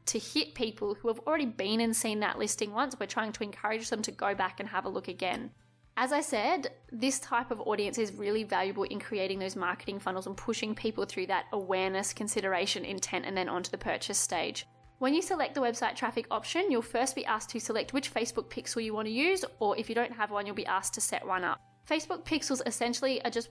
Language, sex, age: English, female, 20-39